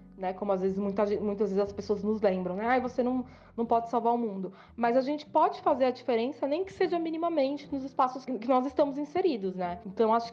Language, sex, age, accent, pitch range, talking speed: Portuguese, female, 20-39, Brazilian, 190-250 Hz, 240 wpm